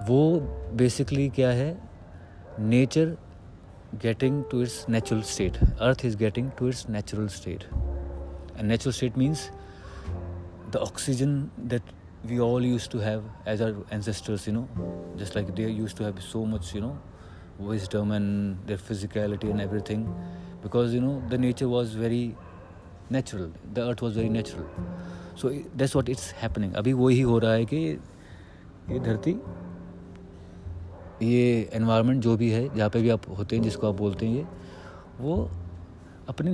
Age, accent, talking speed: 30-49, Indian, 145 wpm